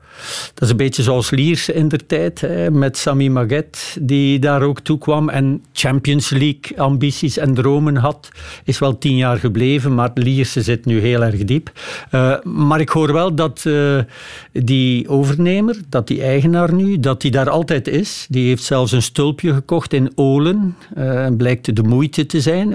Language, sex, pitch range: Dutch, male, 125-150 Hz